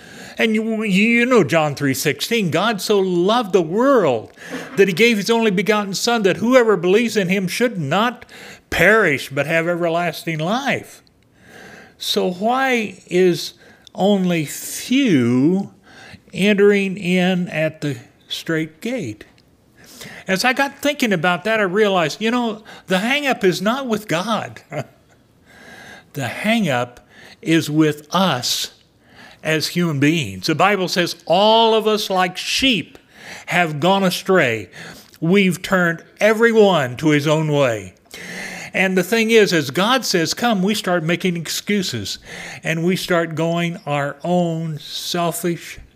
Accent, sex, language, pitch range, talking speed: American, male, English, 155-210 Hz, 135 wpm